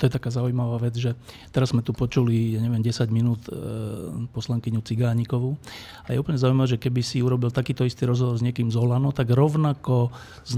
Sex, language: male, Slovak